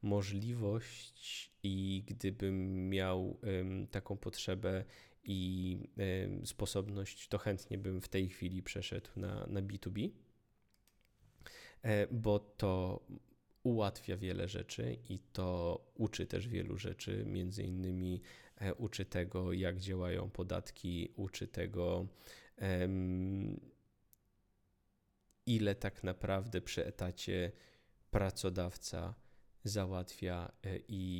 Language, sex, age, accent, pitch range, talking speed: Polish, male, 20-39, native, 95-105 Hz, 90 wpm